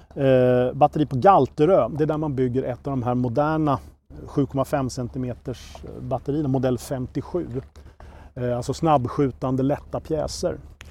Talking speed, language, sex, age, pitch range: 120 wpm, Swedish, male, 40-59, 120-145 Hz